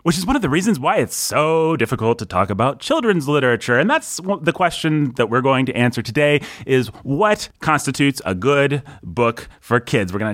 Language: English